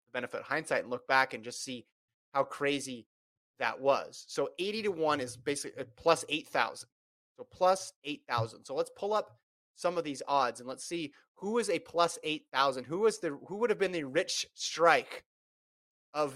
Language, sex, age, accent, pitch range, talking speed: English, male, 30-49, American, 130-170 Hz, 210 wpm